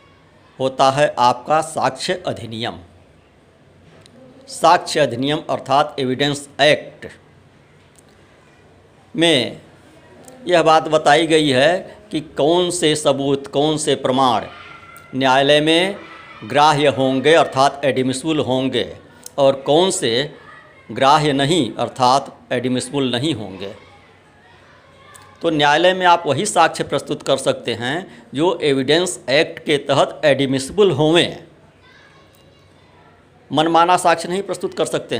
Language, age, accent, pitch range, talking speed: Hindi, 60-79, native, 130-160 Hz, 105 wpm